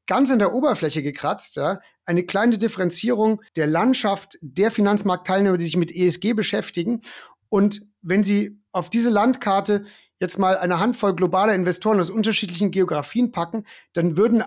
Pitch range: 175-215 Hz